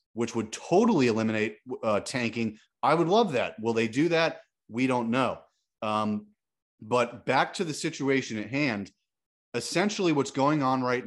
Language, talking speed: English, 165 wpm